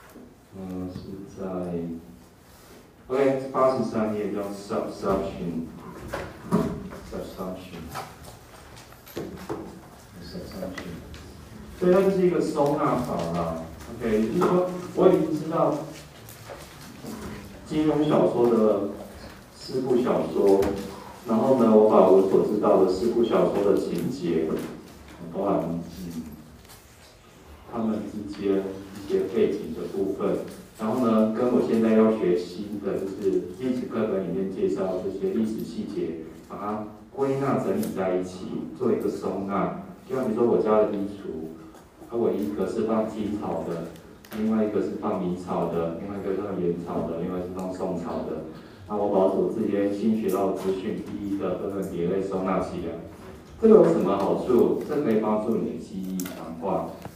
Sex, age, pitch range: male, 40-59, 90-110 Hz